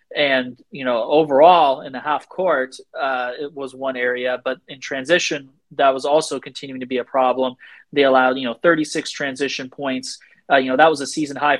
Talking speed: 200 wpm